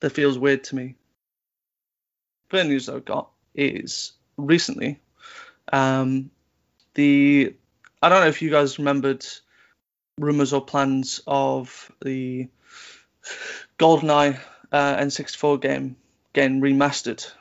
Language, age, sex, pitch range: English, 20-39, male, 130-145 Hz